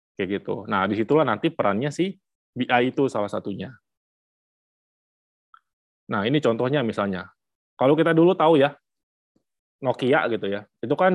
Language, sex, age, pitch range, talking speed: Indonesian, male, 20-39, 105-150 Hz, 135 wpm